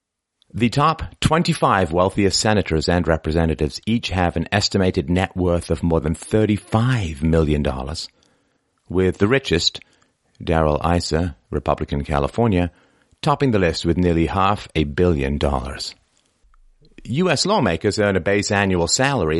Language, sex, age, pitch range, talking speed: English, male, 40-59, 85-110 Hz, 125 wpm